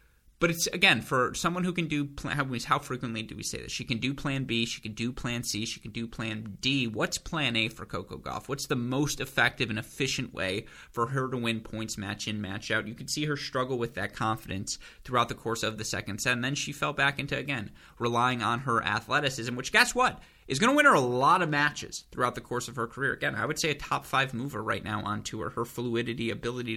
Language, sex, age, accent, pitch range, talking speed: English, male, 20-39, American, 110-135 Hz, 240 wpm